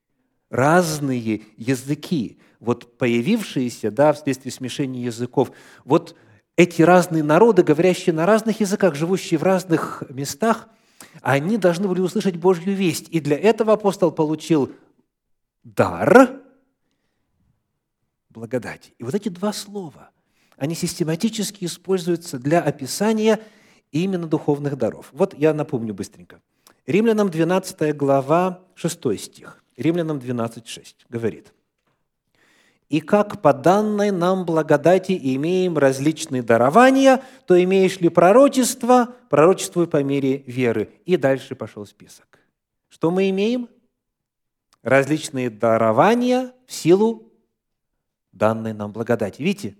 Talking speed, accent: 110 wpm, native